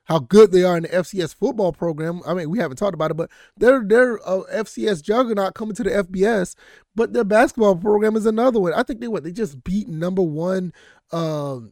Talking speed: 220 wpm